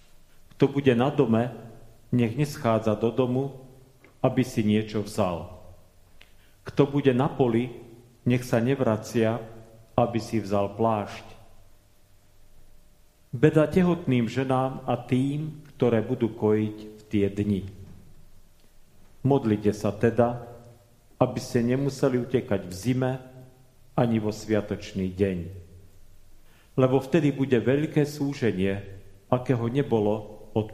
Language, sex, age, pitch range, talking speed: Slovak, male, 40-59, 100-130 Hz, 105 wpm